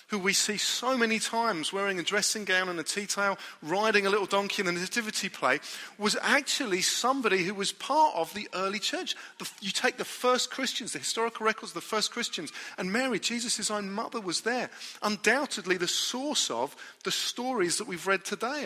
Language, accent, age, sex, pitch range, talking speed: English, British, 40-59, male, 185-235 Hz, 195 wpm